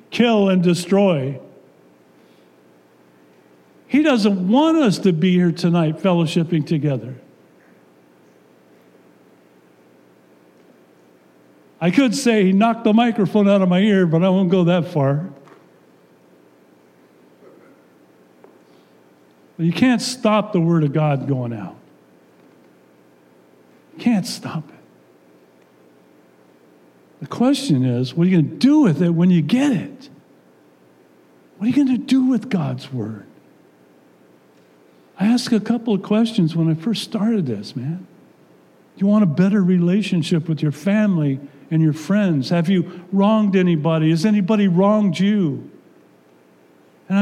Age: 50-69